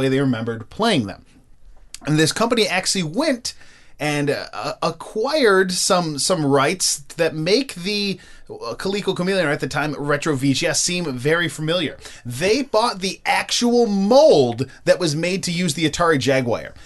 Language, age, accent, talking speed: English, 20-39, American, 145 wpm